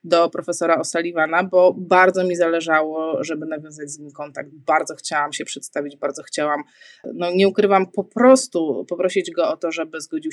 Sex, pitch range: female, 160-235 Hz